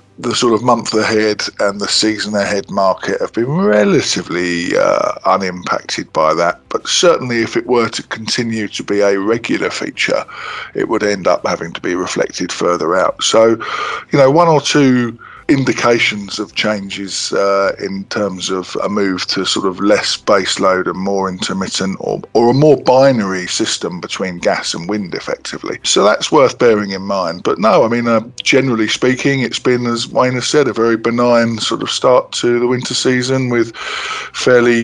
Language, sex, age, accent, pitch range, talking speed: English, male, 50-69, British, 100-120 Hz, 180 wpm